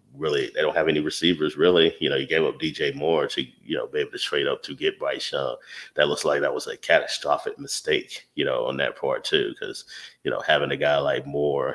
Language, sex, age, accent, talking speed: English, male, 30-49, American, 245 wpm